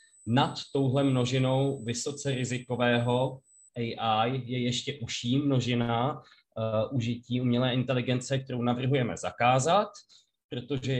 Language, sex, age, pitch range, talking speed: Czech, male, 20-39, 105-130 Hz, 100 wpm